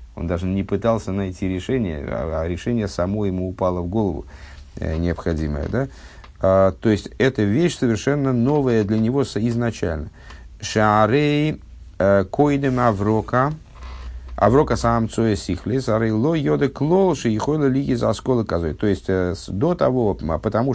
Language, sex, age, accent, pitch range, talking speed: Russian, male, 50-69, native, 85-120 Hz, 115 wpm